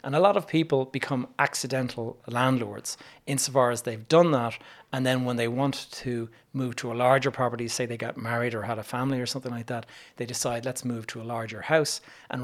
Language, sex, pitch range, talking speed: English, male, 115-140 Hz, 215 wpm